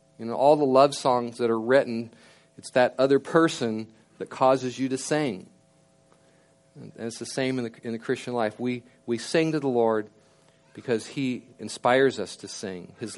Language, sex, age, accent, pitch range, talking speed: English, male, 40-59, American, 105-135 Hz, 180 wpm